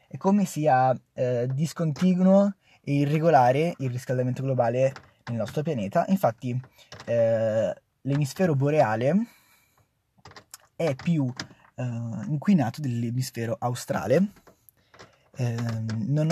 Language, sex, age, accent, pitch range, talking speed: Italian, male, 20-39, native, 120-150 Hz, 90 wpm